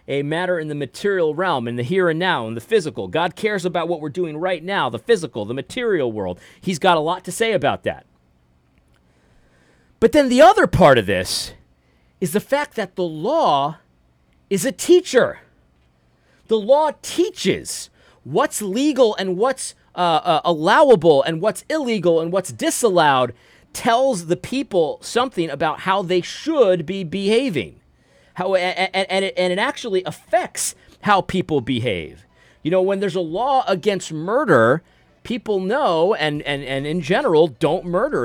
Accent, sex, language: American, male, English